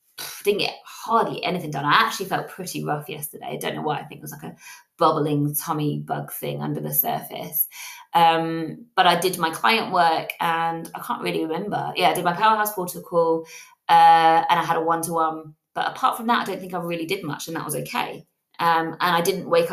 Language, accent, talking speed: English, British, 220 wpm